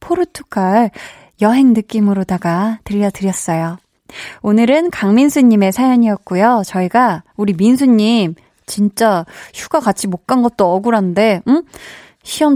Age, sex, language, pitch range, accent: 20-39, female, Korean, 195-275 Hz, native